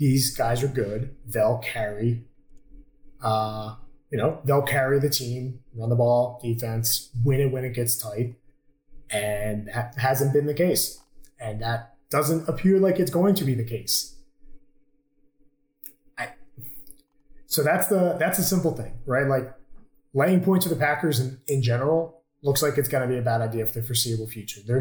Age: 20-39